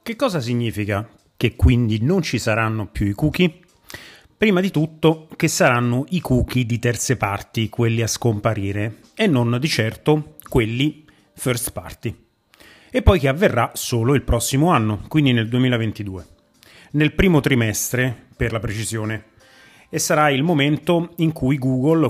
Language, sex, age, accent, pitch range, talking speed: Italian, male, 30-49, native, 110-145 Hz, 150 wpm